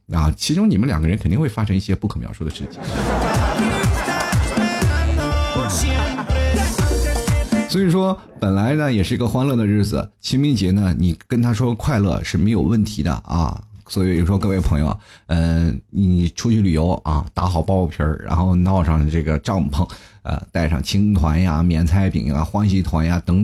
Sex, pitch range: male, 80-105 Hz